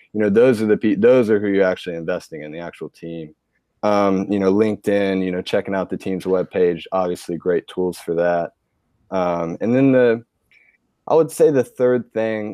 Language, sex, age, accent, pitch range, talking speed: English, male, 20-39, American, 95-110 Hz, 195 wpm